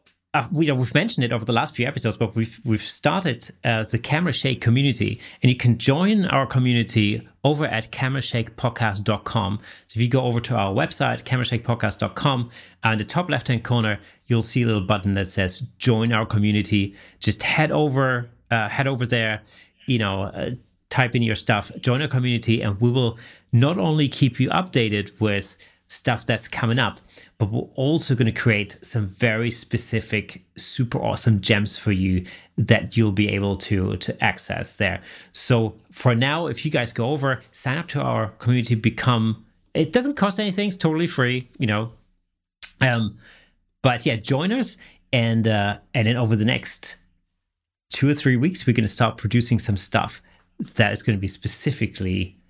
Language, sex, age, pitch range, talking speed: English, male, 30-49, 105-130 Hz, 180 wpm